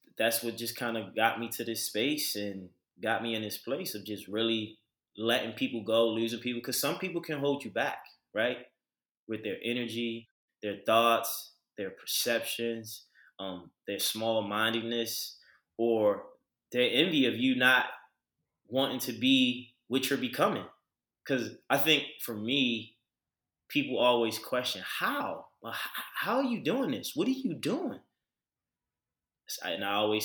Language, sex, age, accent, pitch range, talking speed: English, male, 20-39, American, 115-130 Hz, 150 wpm